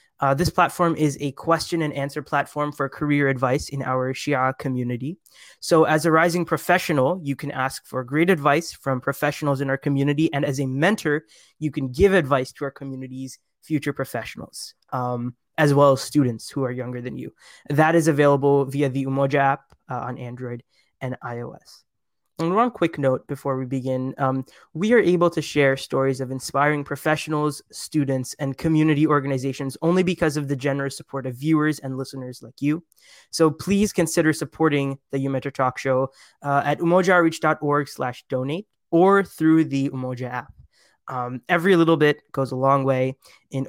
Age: 20-39